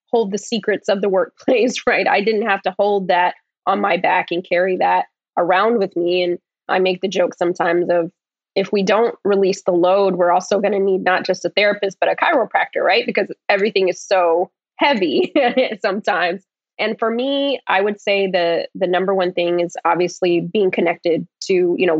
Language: English